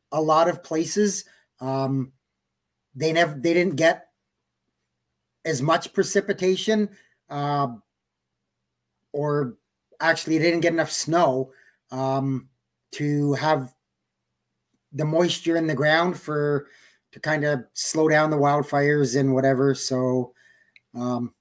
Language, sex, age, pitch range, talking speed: English, male, 30-49, 135-170 Hz, 110 wpm